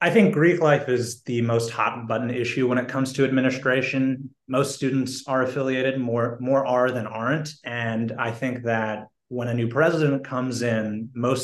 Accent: American